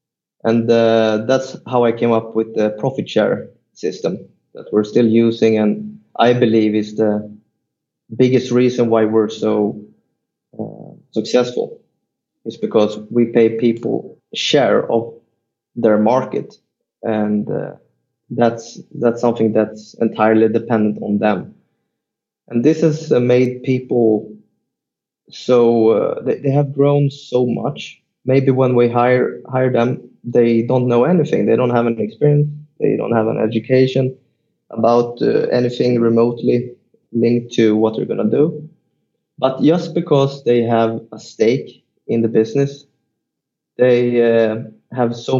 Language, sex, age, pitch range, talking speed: English, male, 20-39, 110-130 Hz, 140 wpm